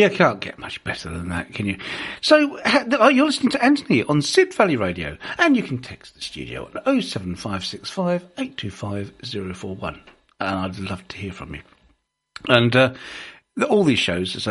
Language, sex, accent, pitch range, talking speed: English, male, British, 100-145 Hz, 205 wpm